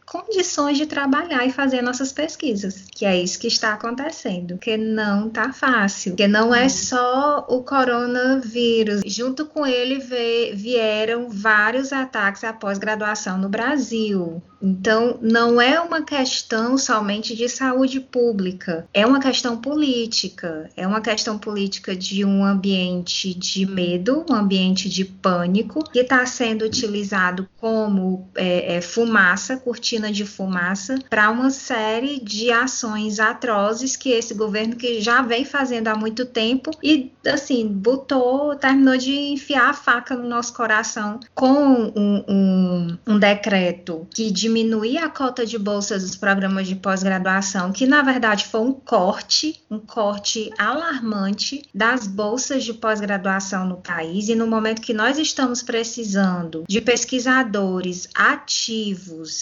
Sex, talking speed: female, 135 wpm